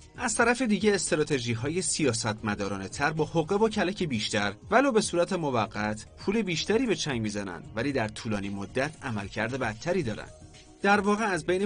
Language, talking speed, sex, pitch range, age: Persian, 165 wpm, male, 110-175 Hz, 30-49